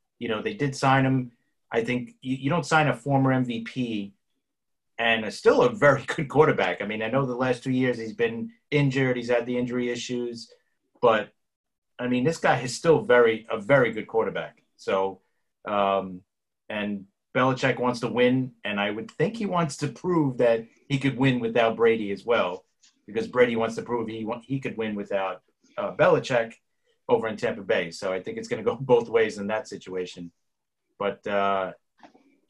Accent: American